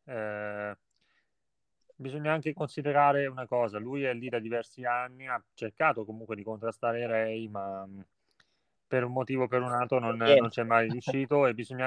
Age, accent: 30-49, native